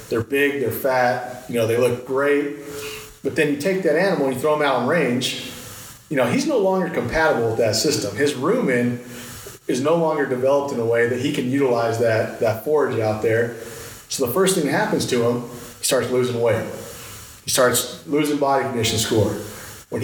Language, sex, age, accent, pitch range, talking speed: English, male, 40-59, American, 115-150 Hz, 205 wpm